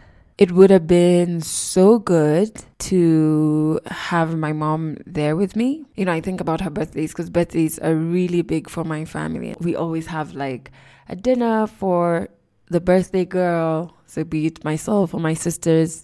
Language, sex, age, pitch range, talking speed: English, female, 20-39, 160-190 Hz, 170 wpm